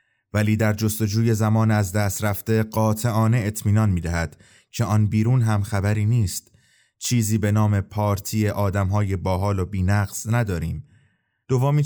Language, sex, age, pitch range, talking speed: Persian, male, 30-49, 100-115 Hz, 140 wpm